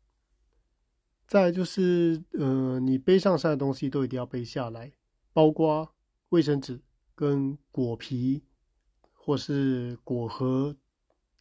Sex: male